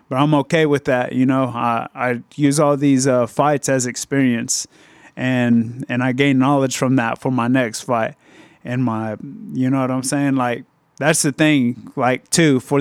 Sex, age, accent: male, 30-49, American